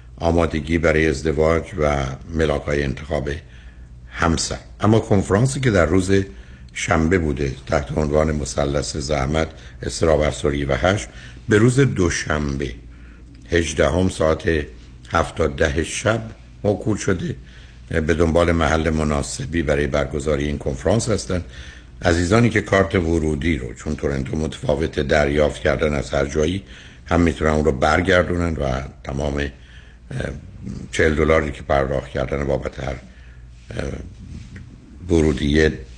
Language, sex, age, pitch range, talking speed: Persian, male, 60-79, 70-85 Hz, 115 wpm